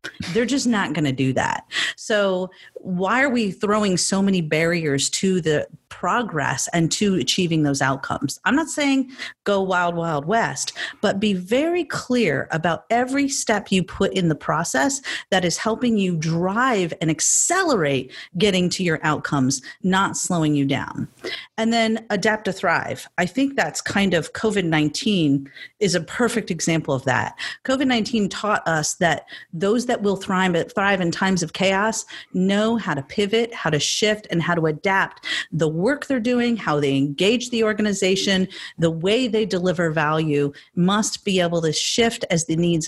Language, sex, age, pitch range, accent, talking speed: English, female, 40-59, 165-220 Hz, American, 170 wpm